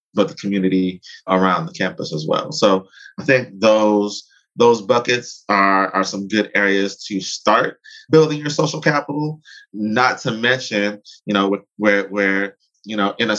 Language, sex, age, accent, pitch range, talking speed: English, male, 20-39, American, 95-115 Hz, 160 wpm